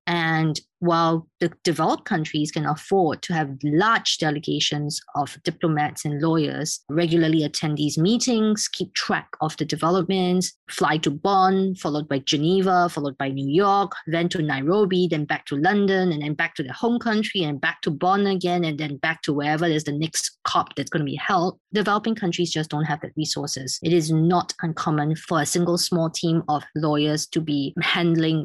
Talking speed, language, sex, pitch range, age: 185 wpm, English, female, 150-175 Hz, 20-39